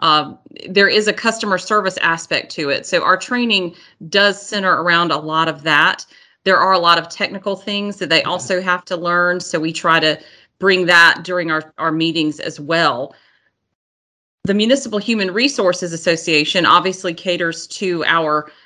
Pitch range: 160-185 Hz